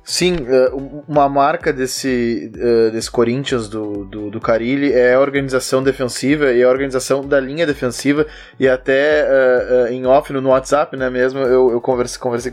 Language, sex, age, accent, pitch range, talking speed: Portuguese, male, 20-39, Brazilian, 130-175 Hz, 170 wpm